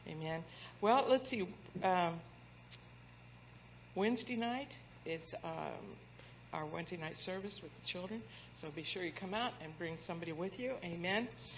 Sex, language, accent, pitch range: female, English, American, 165-220 Hz